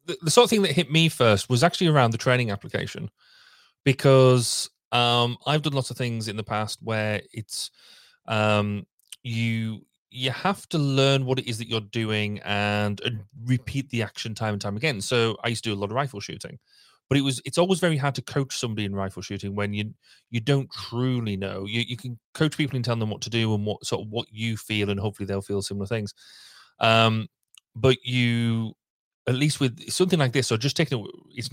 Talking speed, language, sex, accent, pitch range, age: 215 wpm, English, male, British, 100-130 Hz, 30-49